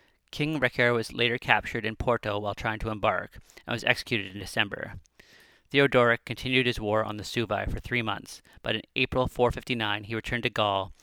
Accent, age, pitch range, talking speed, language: American, 30-49, 100-120 Hz, 185 wpm, English